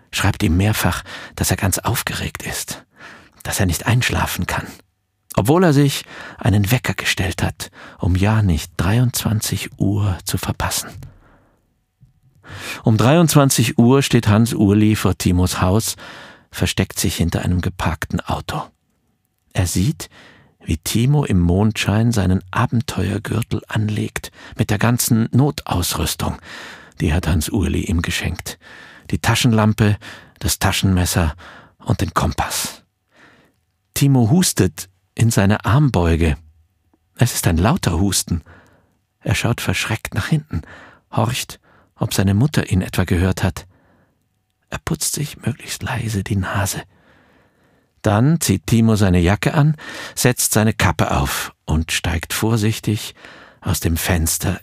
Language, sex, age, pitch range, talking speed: German, male, 50-69, 90-115 Hz, 125 wpm